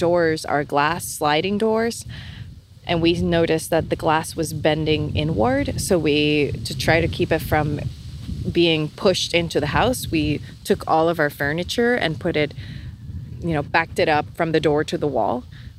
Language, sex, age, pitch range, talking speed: English, female, 20-39, 145-175 Hz, 180 wpm